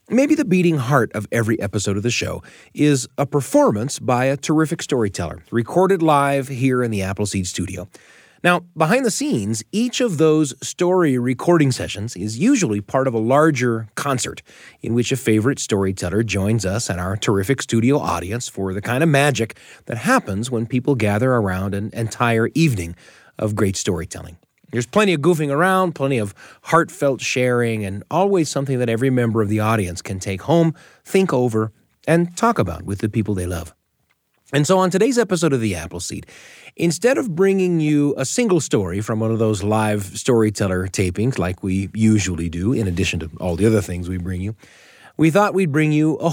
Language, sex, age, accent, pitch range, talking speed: English, male, 30-49, American, 105-155 Hz, 185 wpm